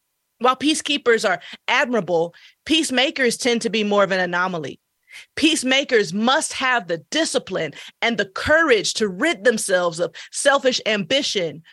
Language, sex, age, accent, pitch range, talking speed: English, female, 30-49, American, 195-265 Hz, 135 wpm